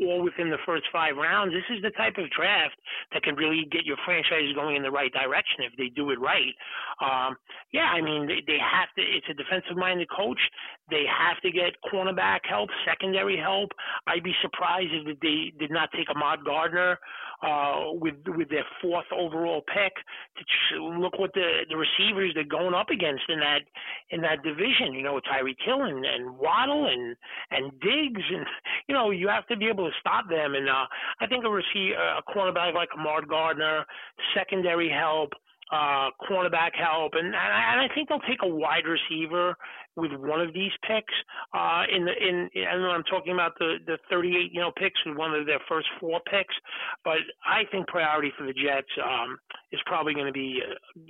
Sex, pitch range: male, 150-185 Hz